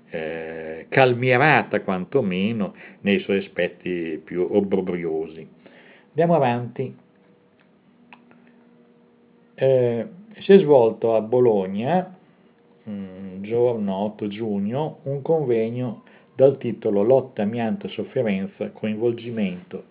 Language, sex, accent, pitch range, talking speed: Italian, male, native, 95-120 Hz, 80 wpm